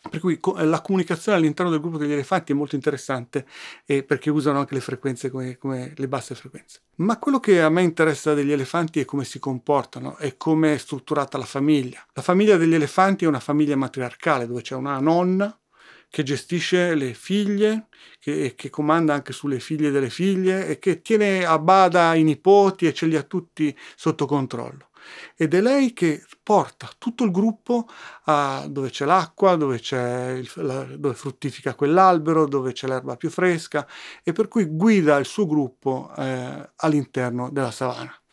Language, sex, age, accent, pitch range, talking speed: Italian, male, 40-59, native, 135-180 Hz, 180 wpm